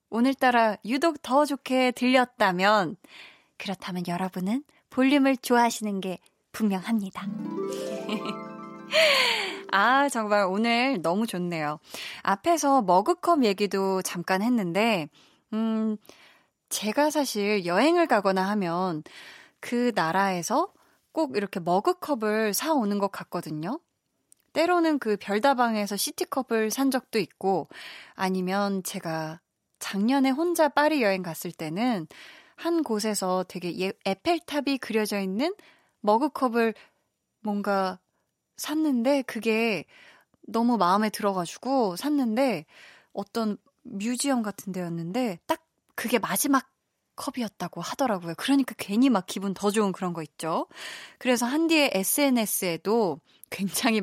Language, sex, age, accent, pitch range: Korean, female, 20-39, native, 190-275 Hz